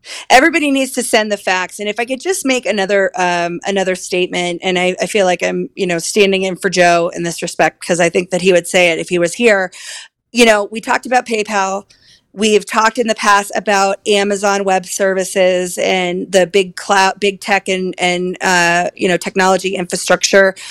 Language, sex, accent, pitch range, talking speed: English, female, American, 185-215 Hz, 205 wpm